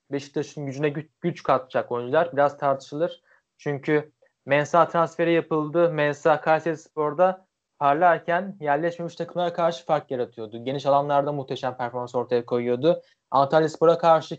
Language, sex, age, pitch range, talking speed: Turkish, male, 20-39, 135-160 Hz, 115 wpm